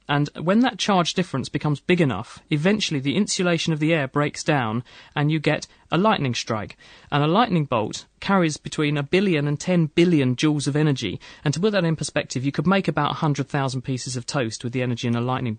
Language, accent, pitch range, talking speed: English, British, 140-175 Hz, 215 wpm